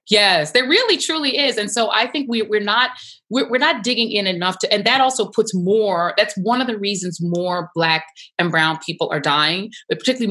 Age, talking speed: 30-49, 220 wpm